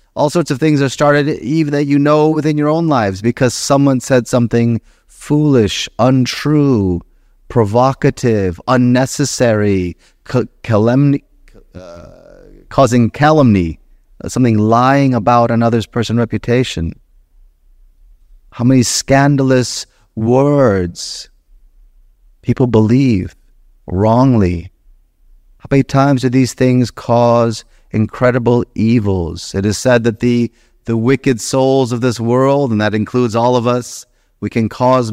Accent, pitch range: American, 100-130 Hz